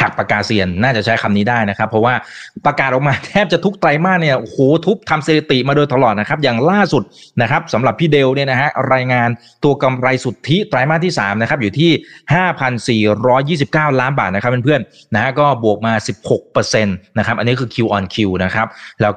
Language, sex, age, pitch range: Thai, male, 20-39, 105-135 Hz